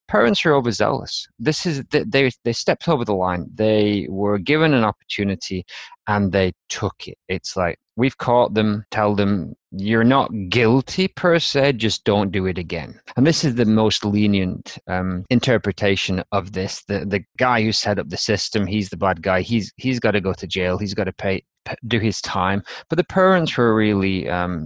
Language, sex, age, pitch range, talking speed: English, male, 20-39, 95-115 Hz, 195 wpm